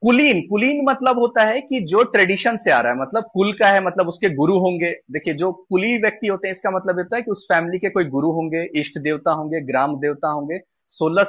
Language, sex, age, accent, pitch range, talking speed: Hindi, male, 30-49, native, 155-230 Hz, 235 wpm